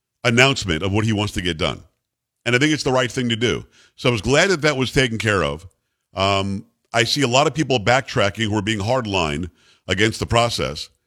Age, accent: 50-69, American